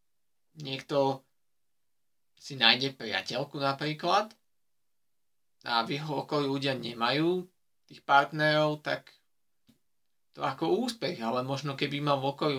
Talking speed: 110 wpm